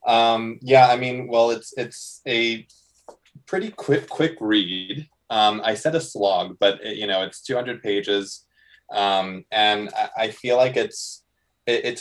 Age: 20-39